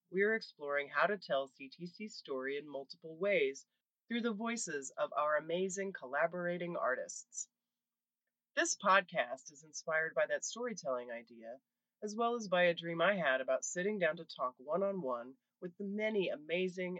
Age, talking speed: 30-49, 160 wpm